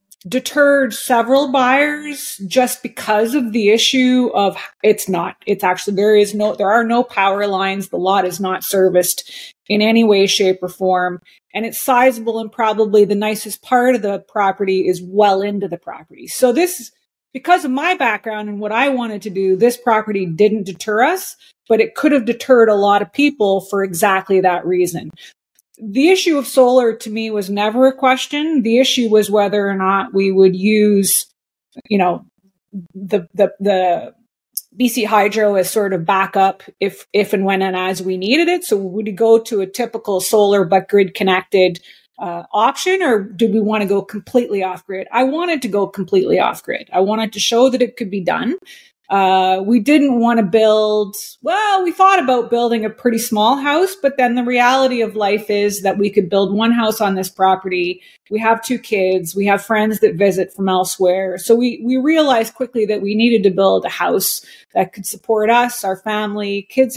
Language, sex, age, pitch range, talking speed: English, female, 30-49, 195-245 Hz, 195 wpm